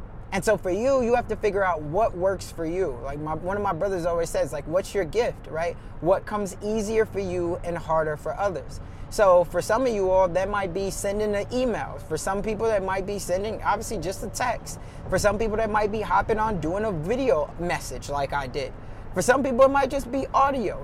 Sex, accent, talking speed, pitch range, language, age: male, American, 235 wpm, 160-210 Hz, English, 20-39